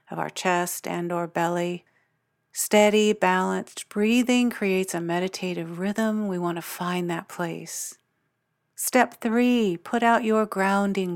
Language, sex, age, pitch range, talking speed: English, female, 50-69, 175-215 Hz, 130 wpm